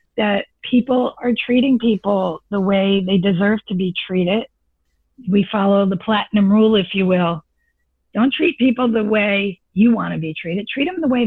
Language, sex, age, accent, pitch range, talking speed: English, female, 50-69, American, 175-220 Hz, 175 wpm